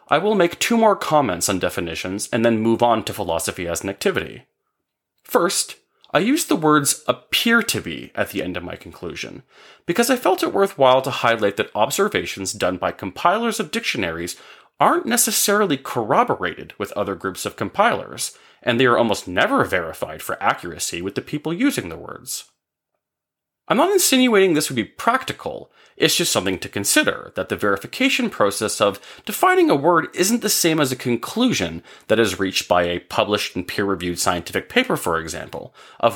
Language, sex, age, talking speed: English, male, 30-49, 175 wpm